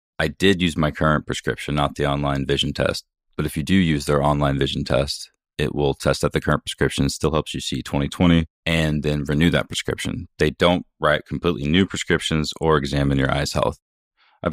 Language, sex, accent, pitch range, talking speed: English, male, American, 70-80 Hz, 200 wpm